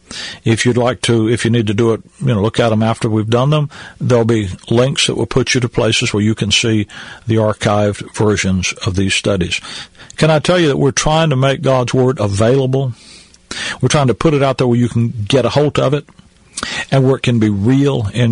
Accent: American